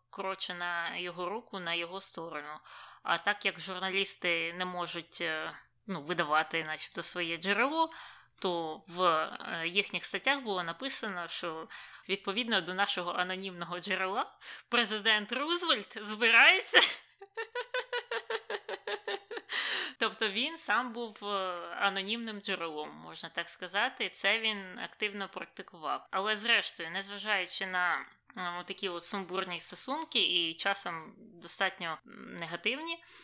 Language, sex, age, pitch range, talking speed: Ukrainian, female, 20-39, 175-220 Hz, 105 wpm